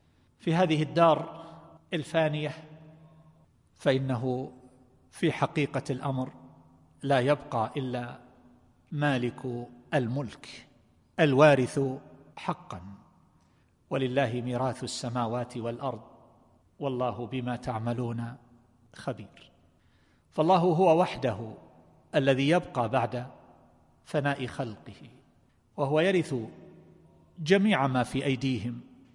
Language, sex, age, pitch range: Arabic, male, 50-69, 120-150 Hz